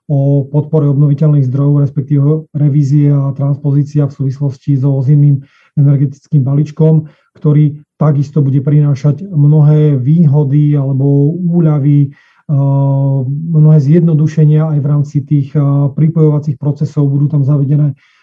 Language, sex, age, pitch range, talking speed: Slovak, male, 30-49, 140-150 Hz, 110 wpm